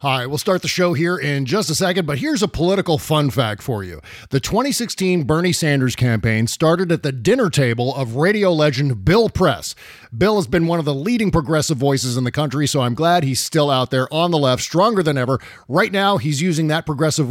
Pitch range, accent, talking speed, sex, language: 135-180 Hz, American, 220 wpm, male, English